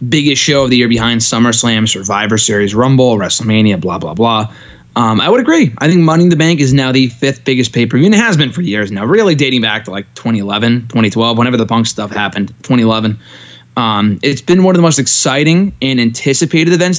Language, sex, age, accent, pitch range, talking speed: English, male, 20-39, American, 115-140 Hz, 215 wpm